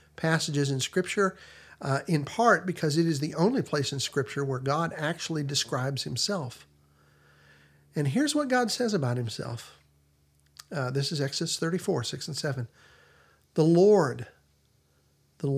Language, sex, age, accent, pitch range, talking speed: English, male, 50-69, American, 125-165 Hz, 145 wpm